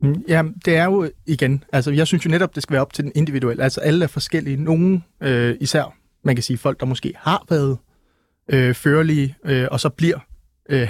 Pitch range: 130-165 Hz